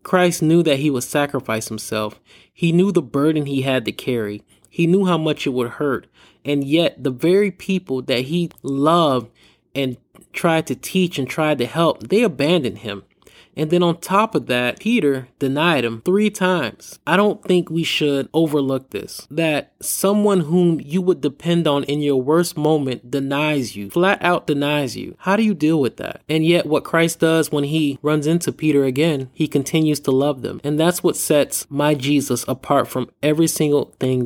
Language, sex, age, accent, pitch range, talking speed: English, male, 20-39, American, 135-165 Hz, 190 wpm